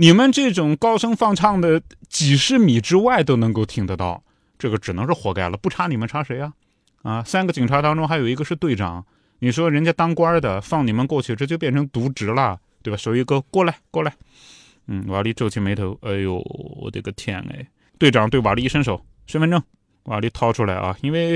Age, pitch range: 20-39, 105-160 Hz